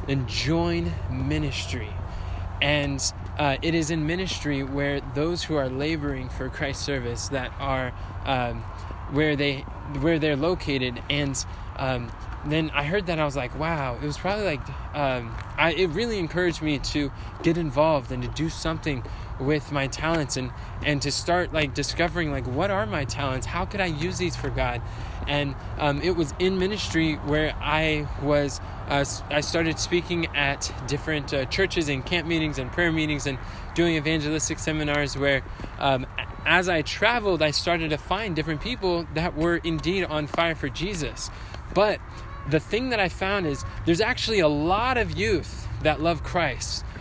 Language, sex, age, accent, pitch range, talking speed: English, male, 20-39, American, 120-165 Hz, 170 wpm